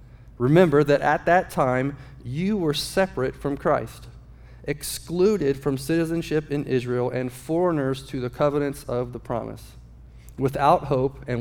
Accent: American